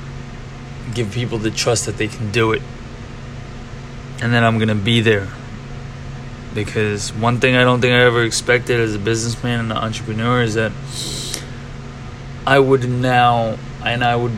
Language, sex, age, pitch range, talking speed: English, male, 20-39, 115-125 Hz, 160 wpm